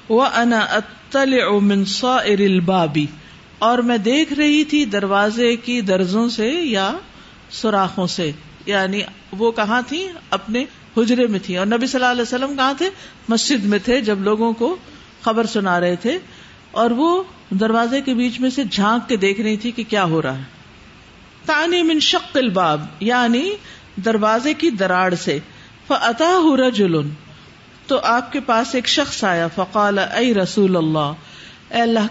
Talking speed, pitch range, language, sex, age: 150 wpm, 200-260 Hz, Urdu, female, 50-69